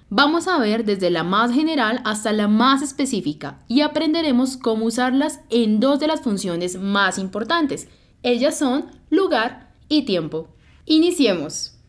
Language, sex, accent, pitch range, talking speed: English, female, Colombian, 215-285 Hz, 140 wpm